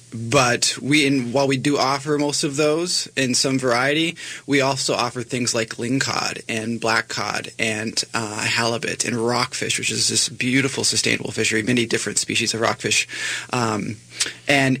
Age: 20-39